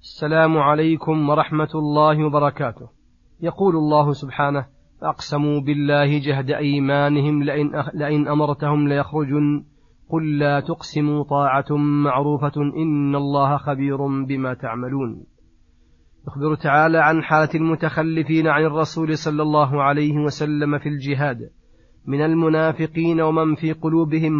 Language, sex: Arabic, male